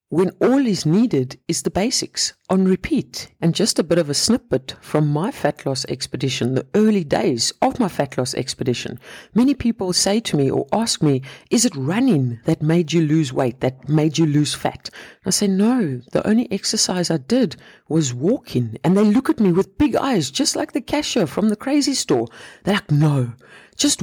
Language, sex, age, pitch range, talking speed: English, female, 50-69, 135-205 Hz, 200 wpm